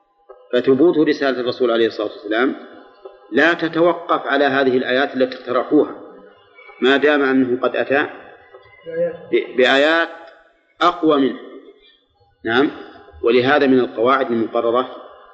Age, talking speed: 40-59, 105 wpm